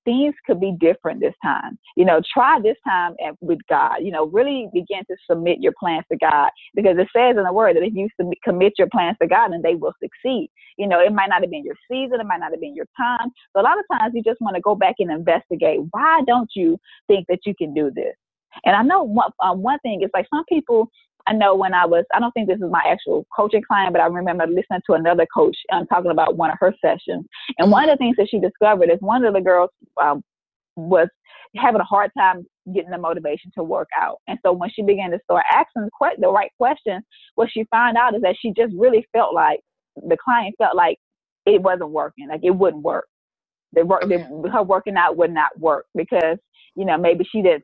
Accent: American